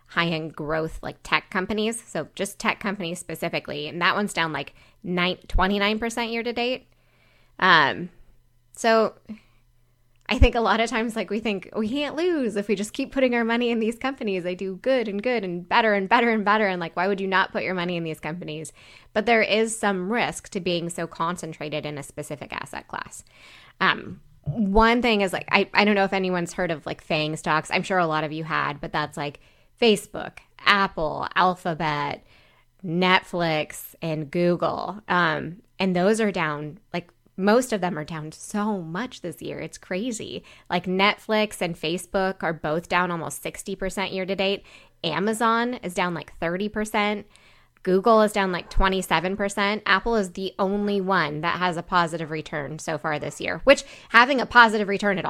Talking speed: 185 wpm